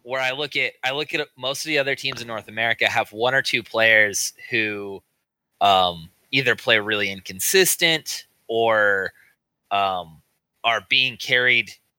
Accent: American